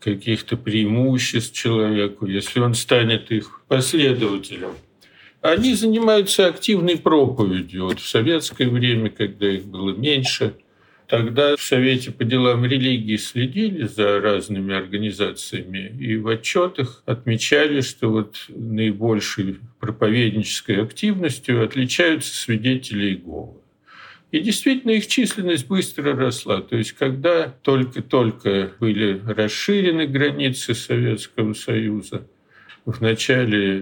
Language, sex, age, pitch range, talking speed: Russian, male, 50-69, 105-140 Hz, 105 wpm